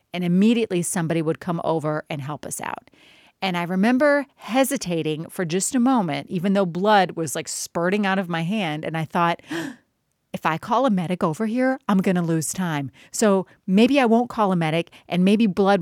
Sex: female